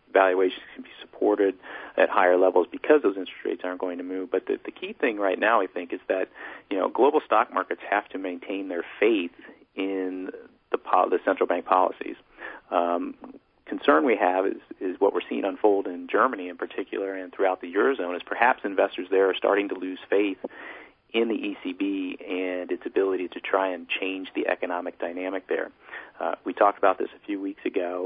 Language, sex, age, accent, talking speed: English, male, 40-59, American, 195 wpm